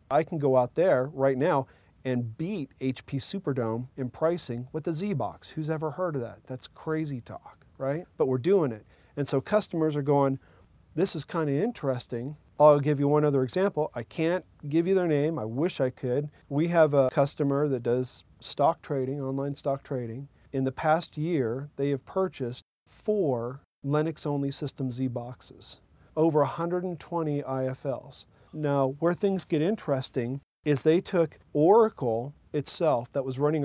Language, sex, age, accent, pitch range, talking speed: English, male, 40-59, American, 130-160 Hz, 165 wpm